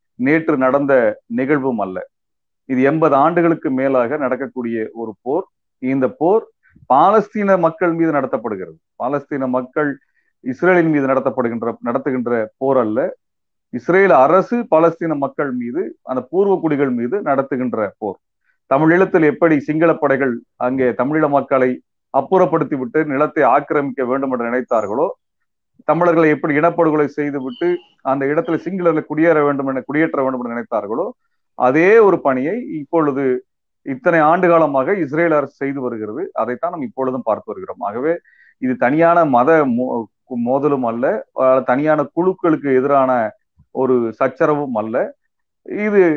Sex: male